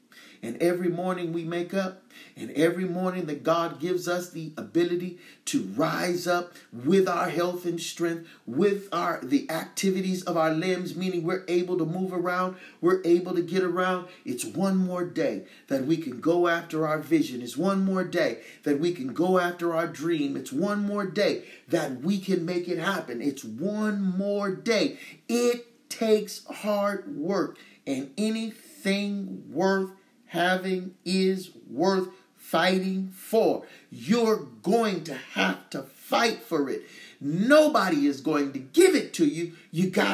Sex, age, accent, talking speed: male, 40-59, American, 160 wpm